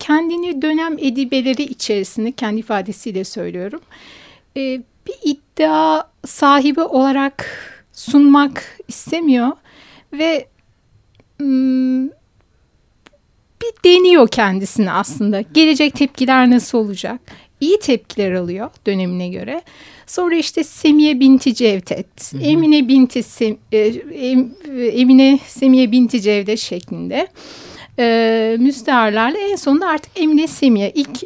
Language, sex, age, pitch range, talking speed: Turkish, female, 60-79, 225-290 Hz, 95 wpm